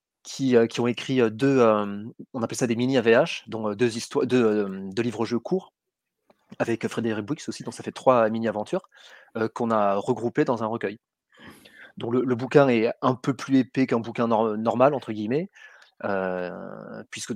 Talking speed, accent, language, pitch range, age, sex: 180 wpm, French, French, 105-125 Hz, 30-49, male